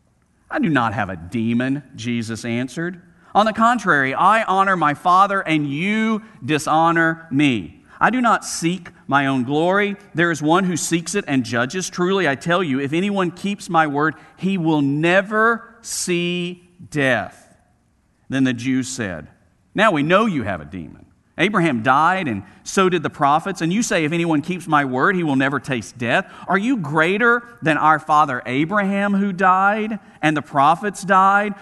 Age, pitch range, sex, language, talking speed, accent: 50-69, 120-190 Hz, male, English, 175 wpm, American